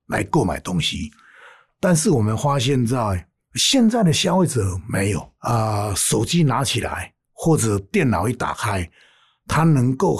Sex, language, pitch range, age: male, Chinese, 110-165 Hz, 60-79